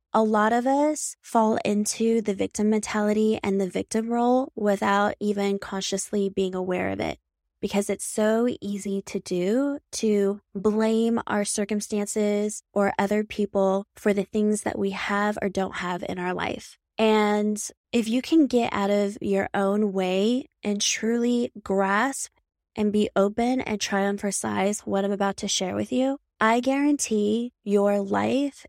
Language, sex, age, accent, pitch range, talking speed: English, female, 20-39, American, 200-230 Hz, 160 wpm